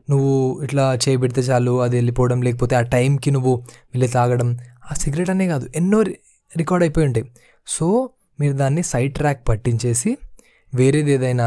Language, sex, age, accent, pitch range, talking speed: Telugu, male, 20-39, native, 120-165 Hz, 145 wpm